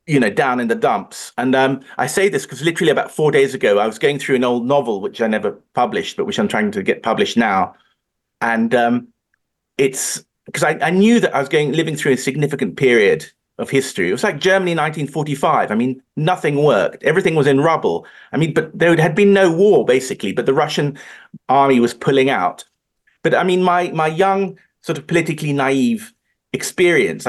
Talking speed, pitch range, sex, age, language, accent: 205 wpm, 130-180 Hz, male, 40-59, English, British